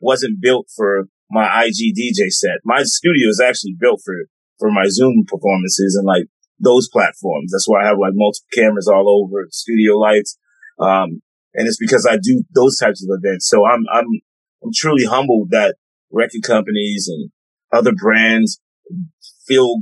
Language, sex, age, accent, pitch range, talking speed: English, male, 30-49, American, 100-140 Hz, 165 wpm